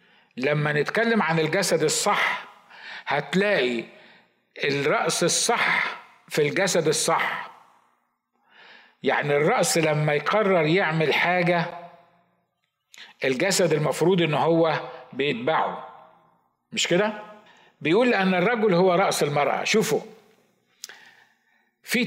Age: 50-69